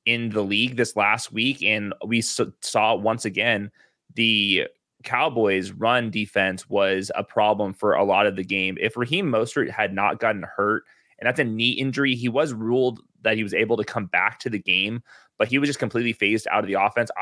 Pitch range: 105-125 Hz